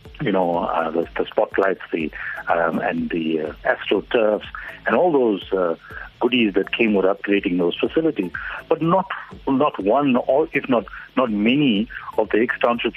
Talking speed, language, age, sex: 165 wpm, English, 60-79, male